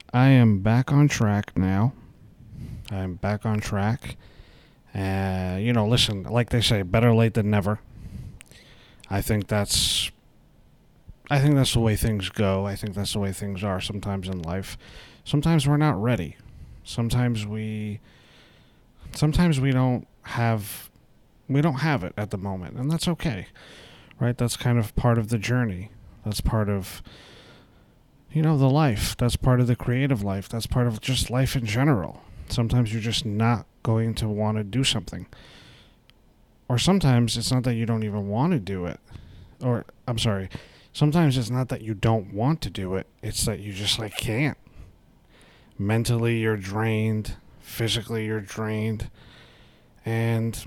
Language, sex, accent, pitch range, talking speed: English, male, American, 105-125 Hz, 160 wpm